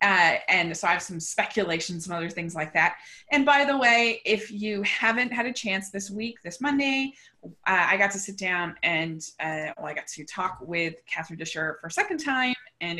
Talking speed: 210 wpm